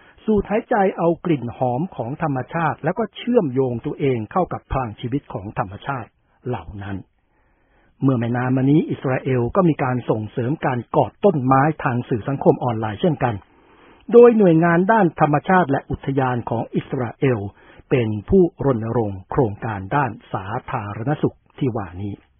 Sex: male